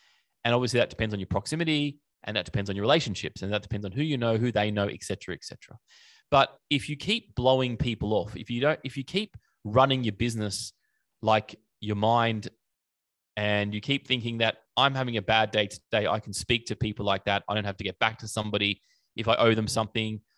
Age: 20-39